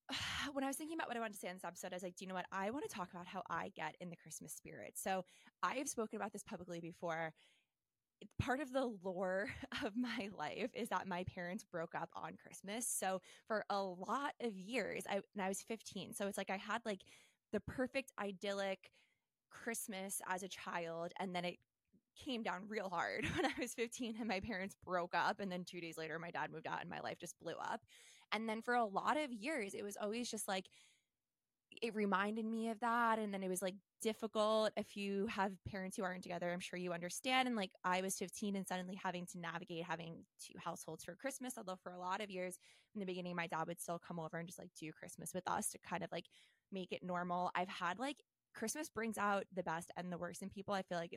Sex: female